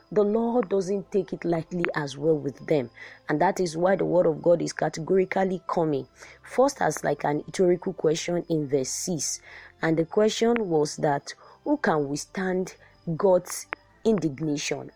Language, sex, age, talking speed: English, female, 20-39, 160 wpm